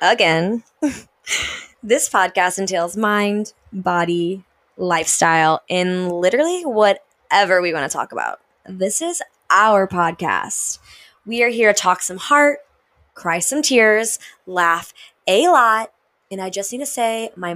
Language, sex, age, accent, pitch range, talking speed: English, female, 20-39, American, 180-240 Hz, 135 wpm